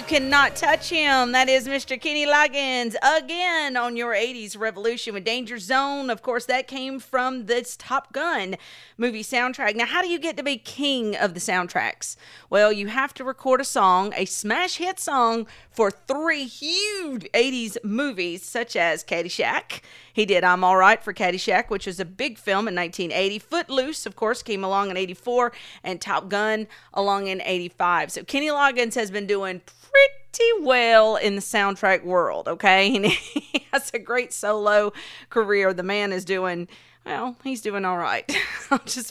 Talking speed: 175 wpm